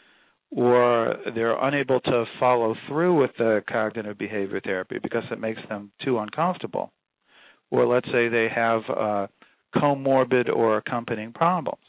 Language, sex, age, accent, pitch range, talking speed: English, male, 50-69, American, 105-130 Hz, 135 wpm